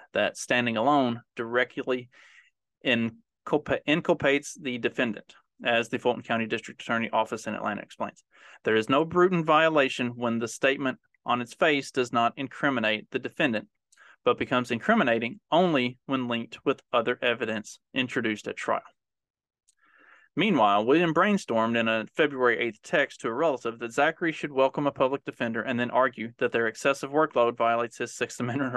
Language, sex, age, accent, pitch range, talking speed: English, male, 30-49, American, 115-135 Hz, 155 wpm